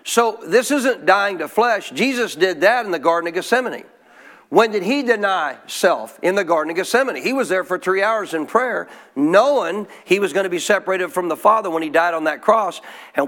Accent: American